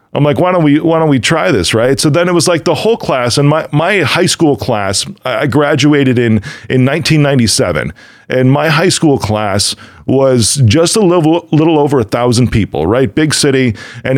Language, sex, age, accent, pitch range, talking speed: English, male, 40-59, American, 115-155 Hz, 205 wpm